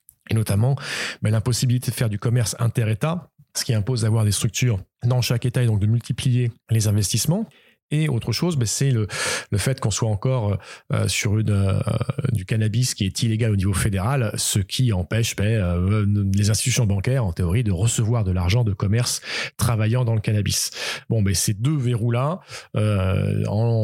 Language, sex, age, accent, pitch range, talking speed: French, male, 40-59, French, 105-130 Hz, 165 wpm